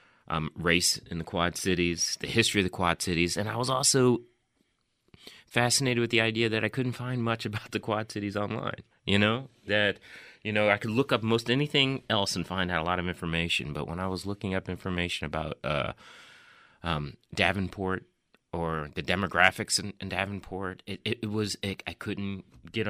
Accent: American